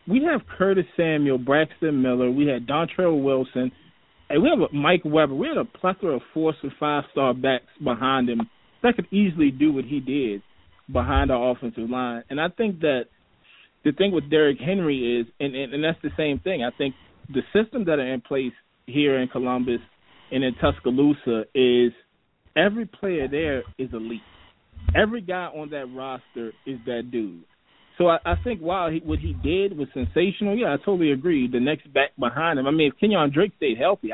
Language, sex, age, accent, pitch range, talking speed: English, male, 20-39, American, 125-160 Hz, 190 wpm